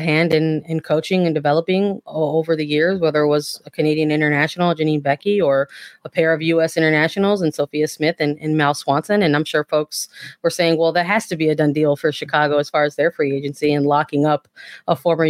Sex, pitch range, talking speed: female, 150-175 Hz, 225 wpm